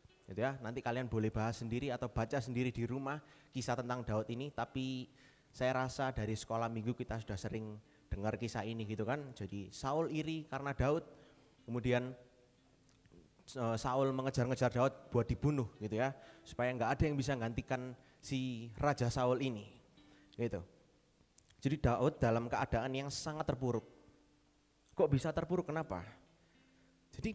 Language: Indonesian